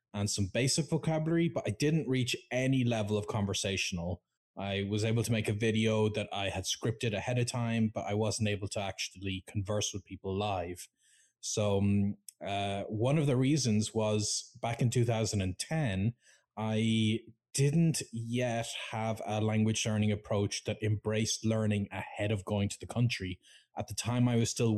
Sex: male